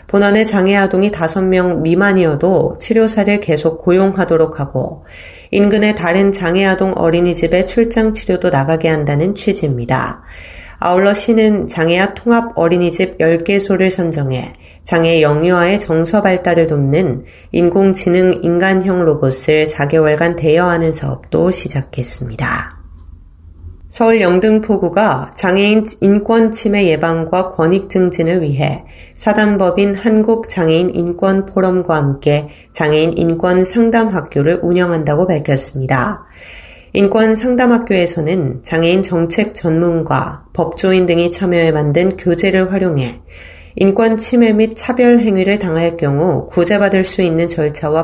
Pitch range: 155-195 Hz